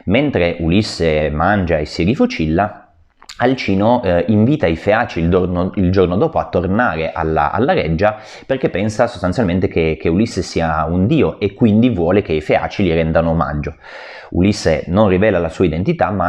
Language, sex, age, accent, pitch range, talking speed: Italian, male, 30-49, native, 80-100 Hz, 165 wpm